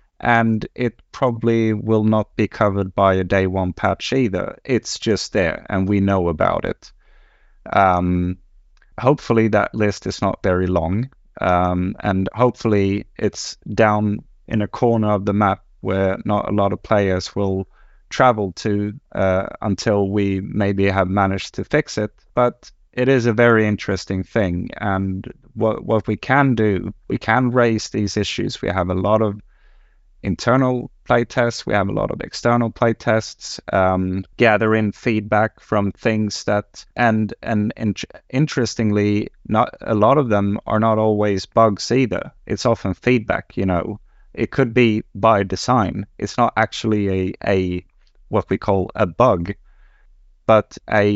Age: 30-49